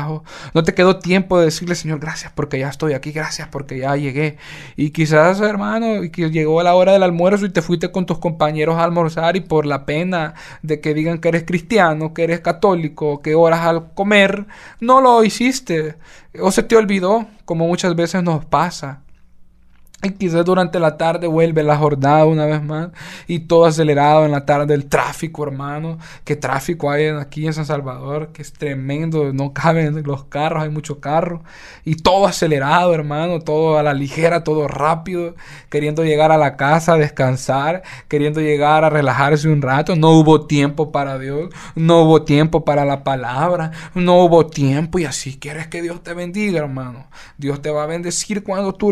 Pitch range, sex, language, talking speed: 150-175 Hz, male, Spanish, 185 wpm